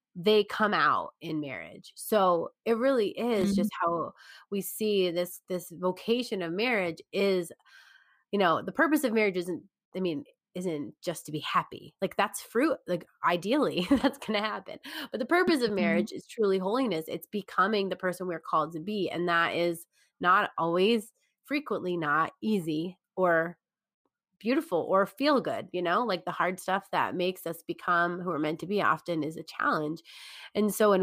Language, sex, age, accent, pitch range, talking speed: English, female, 20-39, American, 170-220 Hz, 180 wpm